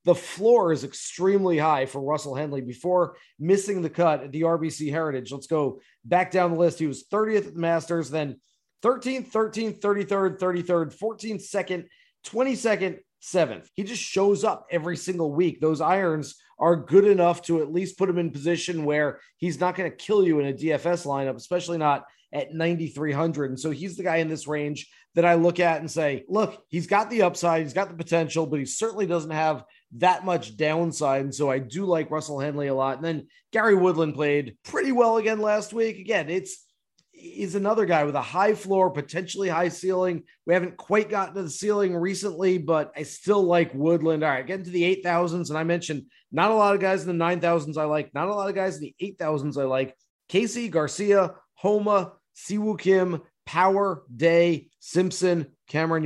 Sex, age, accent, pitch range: male, 30-49, American, 155-195 Hz